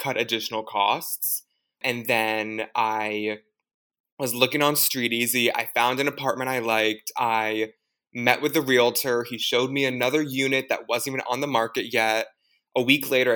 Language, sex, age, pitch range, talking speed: English, male, 20-39, 110-130 Hz, 165 wpm